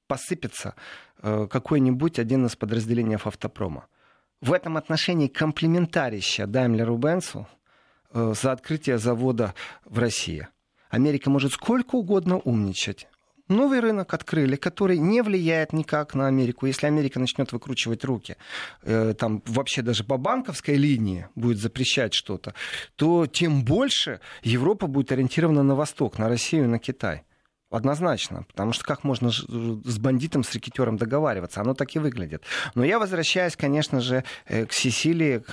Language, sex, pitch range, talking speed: Russian, male, 115-155 Hz, 135 wpm